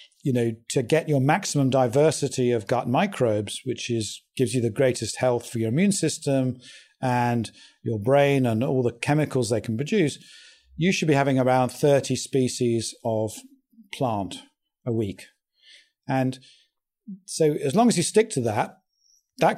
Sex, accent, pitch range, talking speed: male, British, 125-165 Hz, 160 wpm